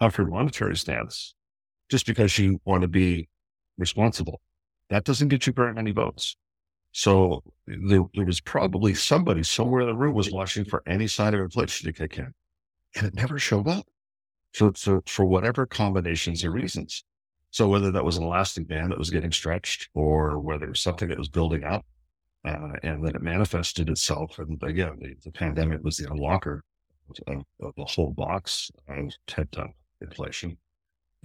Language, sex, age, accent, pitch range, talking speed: English, male, 50-69, American, 80-100 Hz, 175 wpm